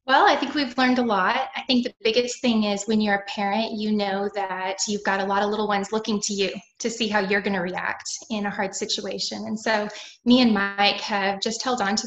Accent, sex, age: American, female, 10-29